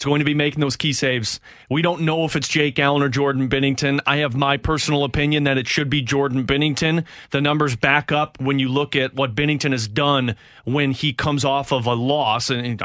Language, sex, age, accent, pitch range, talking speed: English, male, 30-49, American, 135-160 Hz, 235 wpm